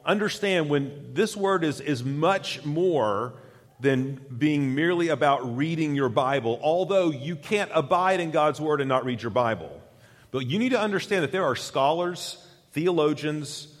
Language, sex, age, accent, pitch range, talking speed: English, male, 40-59, American, 115-150 Hz, 160 wpm